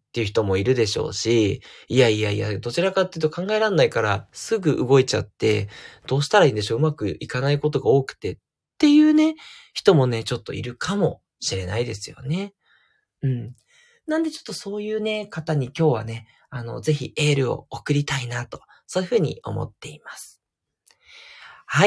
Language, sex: Japanese, male